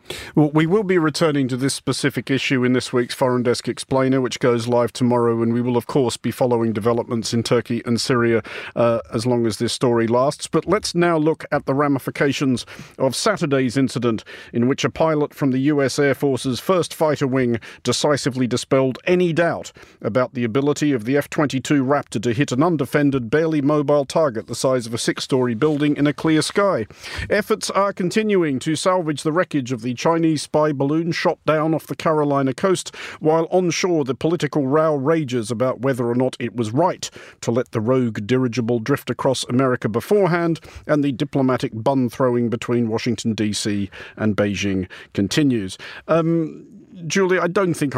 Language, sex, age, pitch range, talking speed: English, male, 40-59, 120-155 Hz, 185 wpm